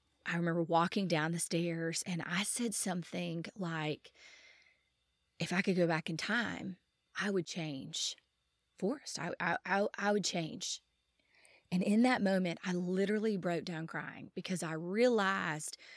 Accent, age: American, 20-39